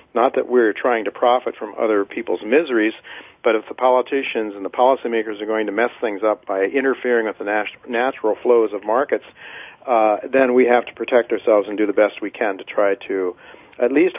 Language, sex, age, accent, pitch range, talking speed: English, male, 50-69, American, 105-125 Hz, 205 wpm